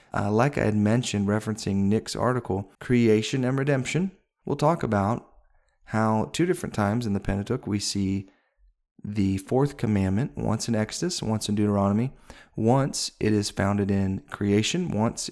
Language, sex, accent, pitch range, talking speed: English, male, American, 105-125 Hz, 155 wpm